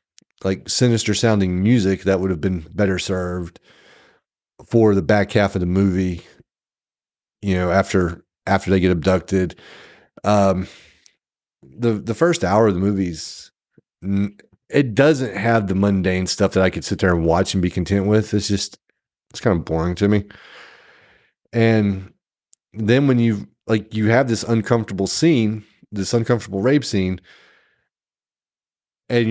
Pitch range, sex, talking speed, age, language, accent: 95-110 Hz, male, 145 wpm, 30-49, English, American